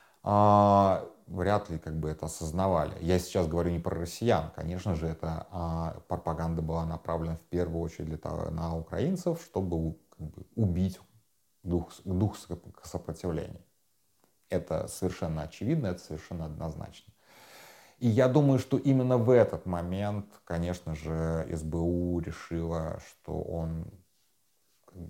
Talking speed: 130 wpm